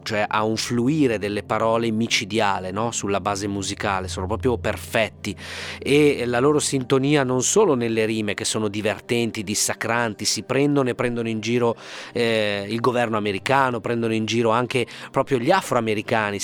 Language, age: Italian, 30-49